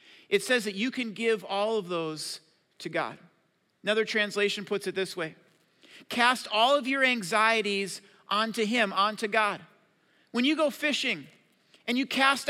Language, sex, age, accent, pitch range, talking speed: English, male, 40-59, American, 185-245 Hz, 160 wpm